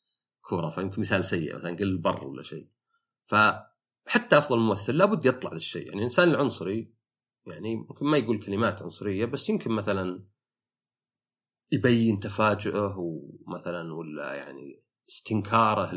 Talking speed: 130 wpm